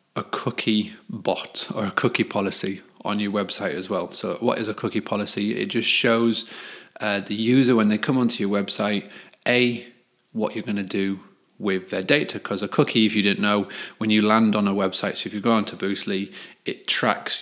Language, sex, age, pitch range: English, male, 30-49, 100-115 Hz